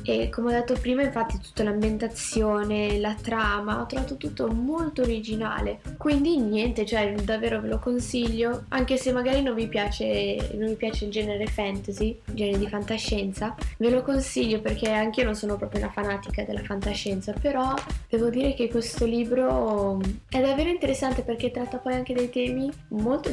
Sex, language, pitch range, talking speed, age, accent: female, Italian, 210-255 Hz, 170 wpm, 10-29, native